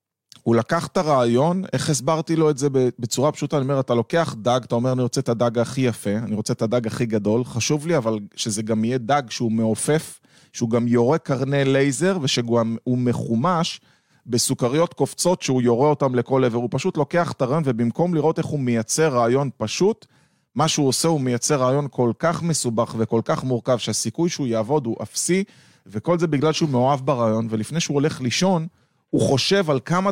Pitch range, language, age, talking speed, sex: 115-155 Hz, Hebrew, 20-39, 180 wpm, male